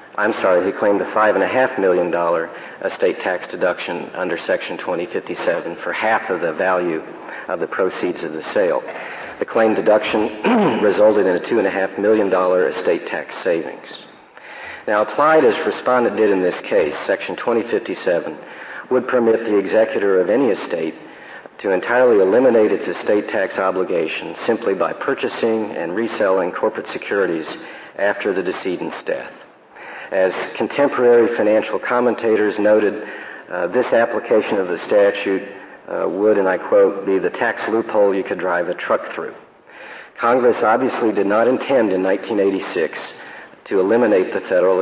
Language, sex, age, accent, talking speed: English, male, 50-69, American, 145 wpm